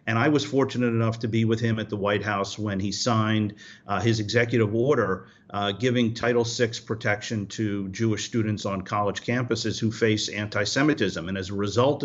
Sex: male